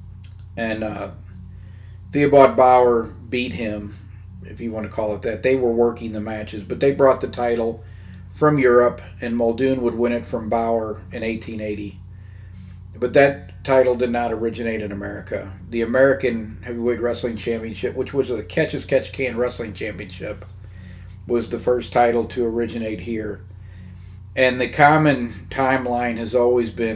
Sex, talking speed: male, 150 wpm